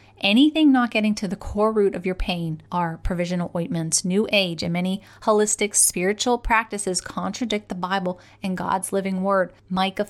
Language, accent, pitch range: English, American, 175-210 Hz